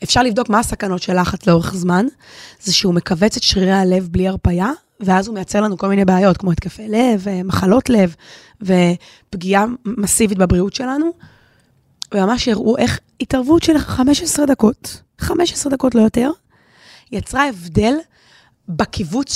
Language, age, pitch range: Hebrew, 20-39, 185-250 Hz